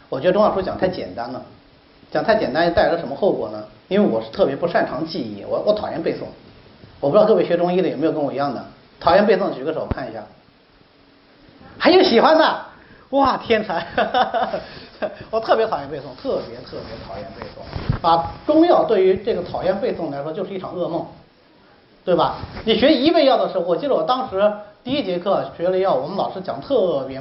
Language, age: Chinese, 40-59